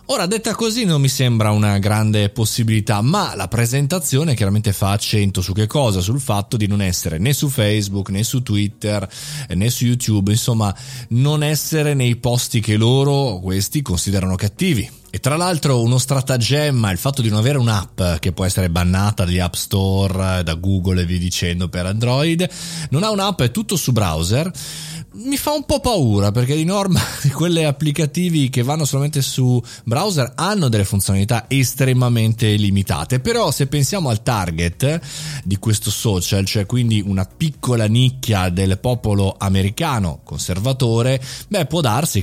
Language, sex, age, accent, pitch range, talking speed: Italian, male, 20-39, native, 100-145 Hz, 160 wpm